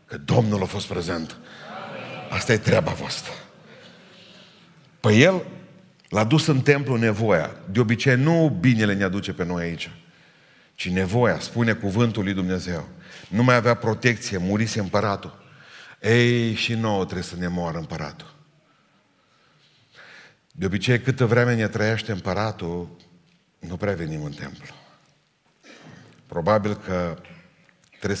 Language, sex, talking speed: Romanian, male, 130 wpm